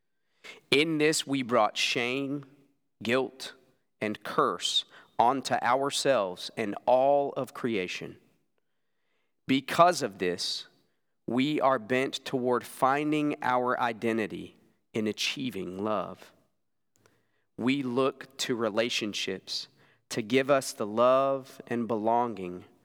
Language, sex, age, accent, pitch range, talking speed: English, male, 40-59, American, 115-140 Hz, 100 wpm